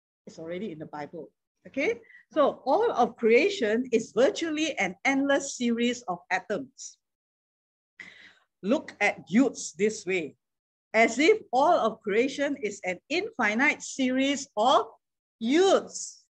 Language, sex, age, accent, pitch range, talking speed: English, female, 50-69, Malaysian, 195-270 Hz, 120 wpm